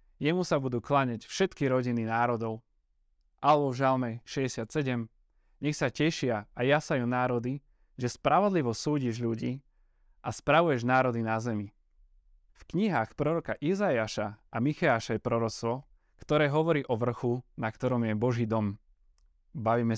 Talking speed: 130 wpm